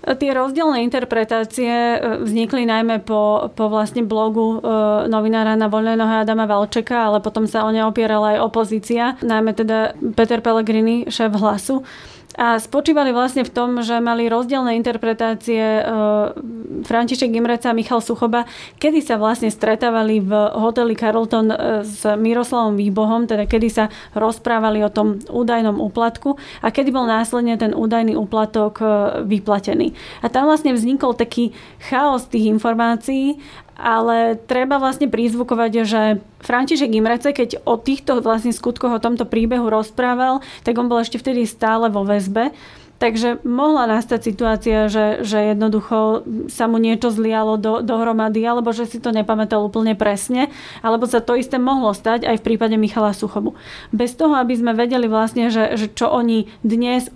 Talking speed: 150 wpm